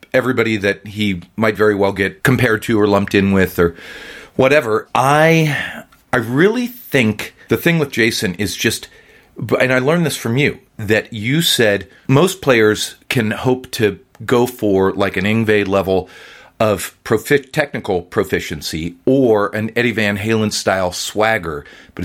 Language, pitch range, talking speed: English, 100-135 Hz, 155 wpm